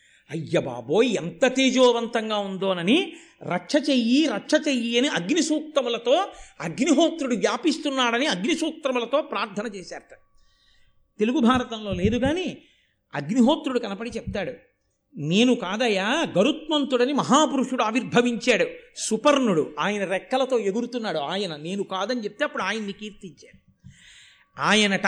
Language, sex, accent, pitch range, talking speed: Telugu, male, native, 190-255 Hz, 100 wpm